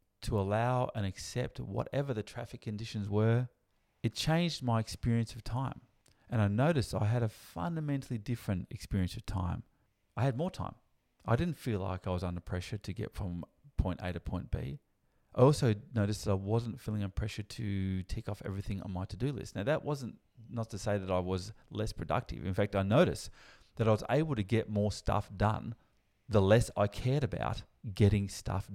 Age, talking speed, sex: 30-49, 195 wpm, male